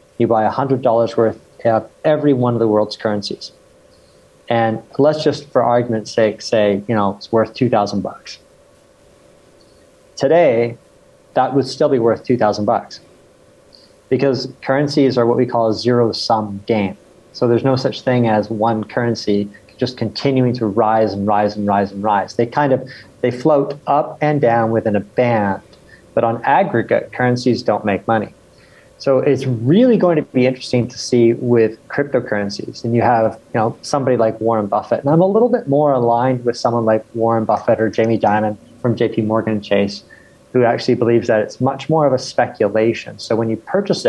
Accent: American